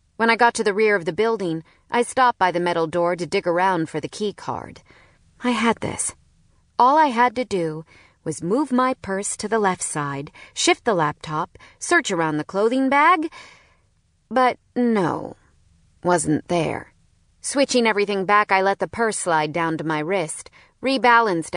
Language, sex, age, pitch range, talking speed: English, female, 40-59, 165-245 Hz, 175 wpm